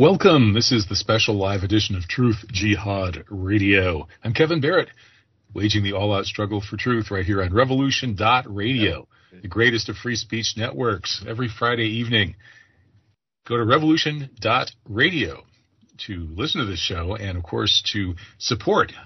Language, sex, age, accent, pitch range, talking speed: English, male, 40-59, American, 95-115 Hz, 145 wpm